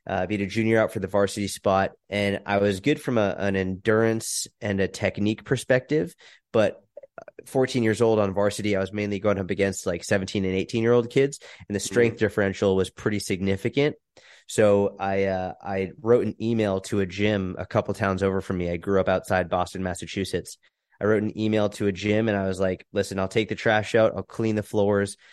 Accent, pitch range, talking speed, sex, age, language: American, 95-110 Hz, 210 wpm, male, 20-39, English